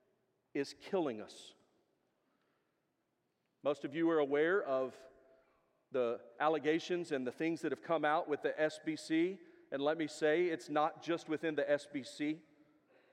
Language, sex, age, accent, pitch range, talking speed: English, male, 40-59, American, 155-190 Hz, 140 wpm